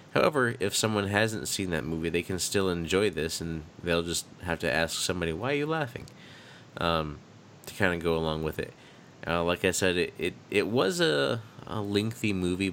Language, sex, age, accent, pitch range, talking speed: English, male, 20-39, American, 80-95 Hz, 205 wpm